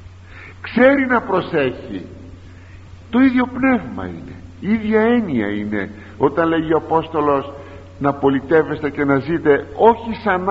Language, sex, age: Greek, male, 50-69